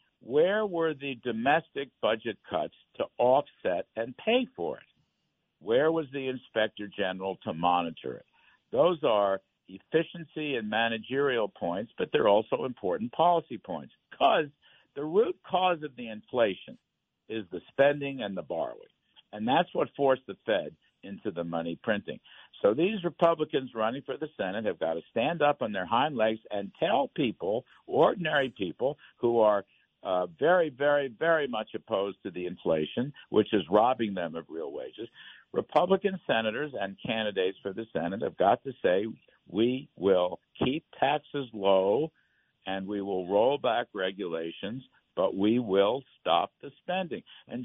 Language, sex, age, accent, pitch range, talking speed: English, male, 60-79, American, 105-155 Hz, 155 wpm